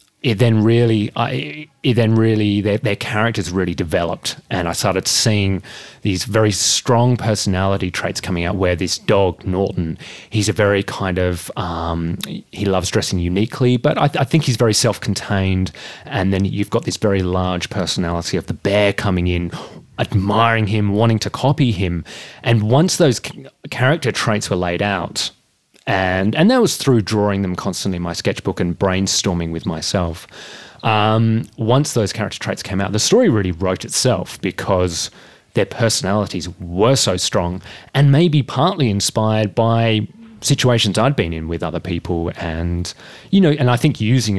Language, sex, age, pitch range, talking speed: English, male, 30-49, 90-115 Hz, 170 wpm